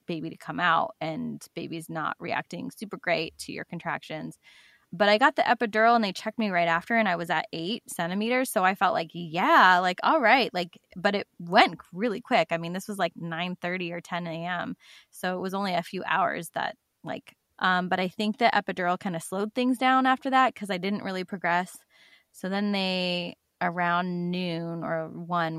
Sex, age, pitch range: female, 20-39, 175-230 Hz